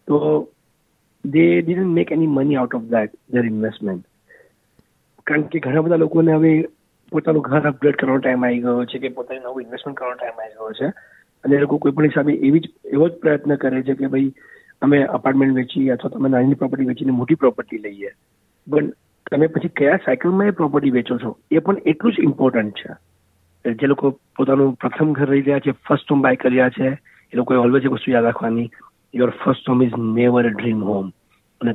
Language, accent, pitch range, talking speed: Gujarati, native, 125-145 Hz, 195 wpm